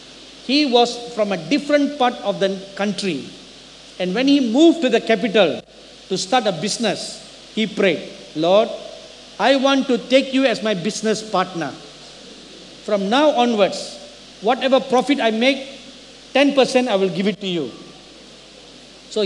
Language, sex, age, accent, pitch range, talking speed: English, male, 50-69, Indian, 215-285 Hz, 145 wpm